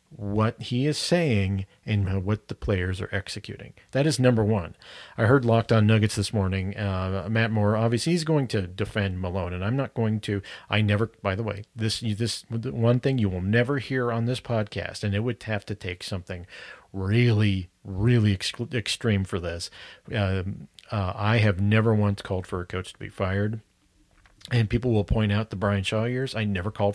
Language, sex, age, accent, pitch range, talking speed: English, male, 40-59, American, 95-115 Hz, 195 wpm